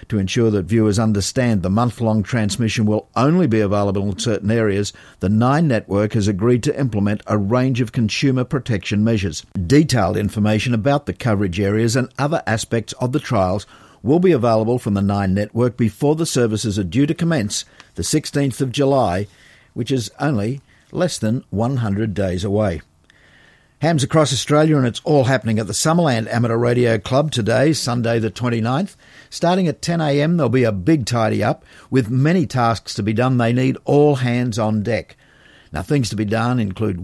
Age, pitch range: 50-69, 110-140 Hz